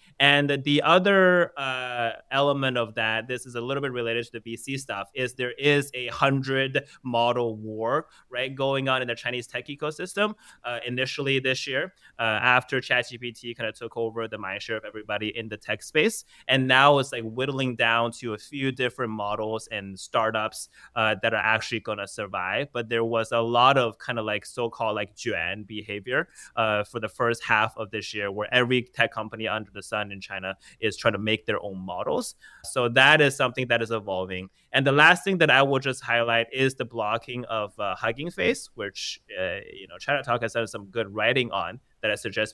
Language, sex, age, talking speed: English, male, 20-39, 205 wpm